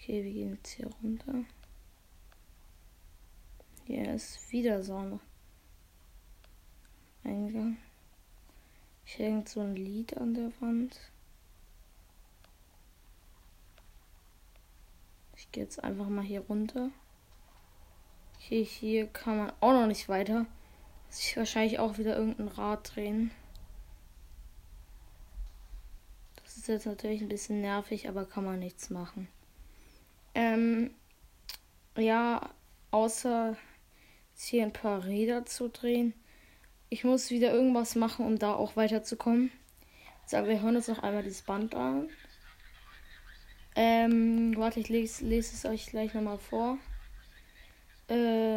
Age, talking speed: 20-39, 115 wpm